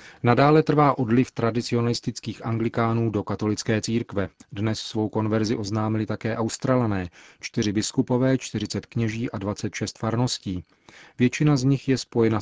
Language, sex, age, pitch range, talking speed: Czech, male, 40-59, 105-125 Hz, 125 wpm